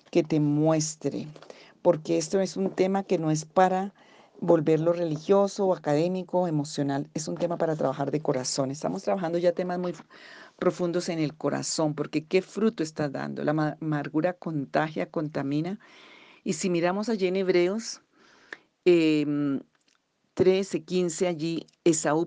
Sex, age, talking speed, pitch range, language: female, 40-59, 145 wpm, 150-175 Hz, Spanish